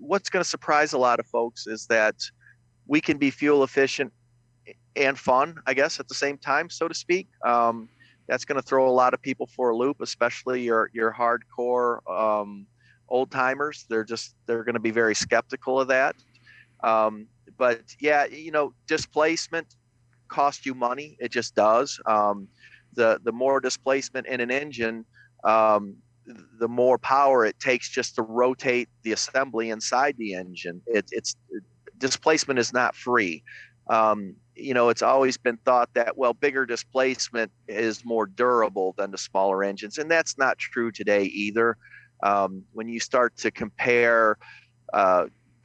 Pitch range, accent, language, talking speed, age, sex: 110-130 Hz, American, English, 165 wpm, 40-59, male